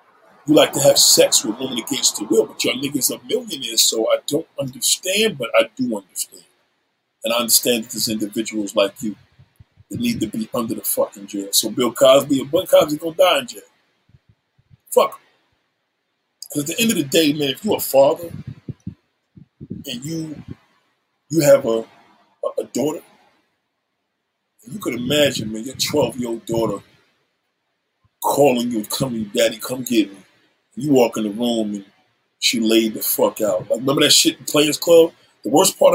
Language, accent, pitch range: English, American, 115-170 Hz